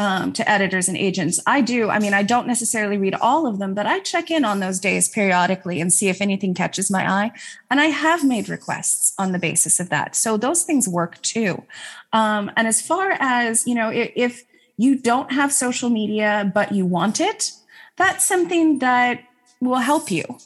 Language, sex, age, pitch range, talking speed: English, female, 20-39, 195-255 Hz, 205 wpm